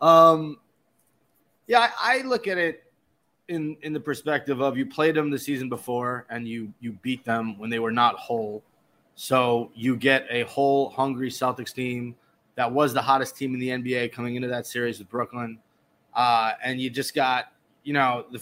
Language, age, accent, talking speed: English, 20-39, American, 190 wpm